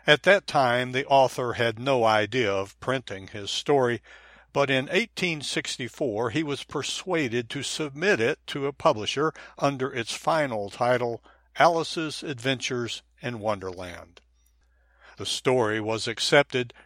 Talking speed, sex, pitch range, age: 130 wpm, male, 110-145 Hz, 60-79